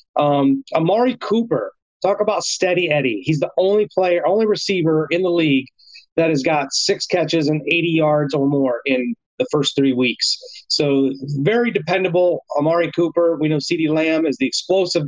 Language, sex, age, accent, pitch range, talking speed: English, male, 30-49, American, 145-180 Hz, 170 wpm